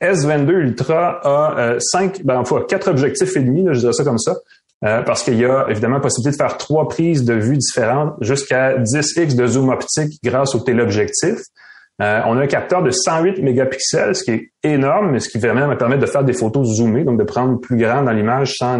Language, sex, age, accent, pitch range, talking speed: French, male, 30-49, Canadian, 115-145 Hz, 215 wpm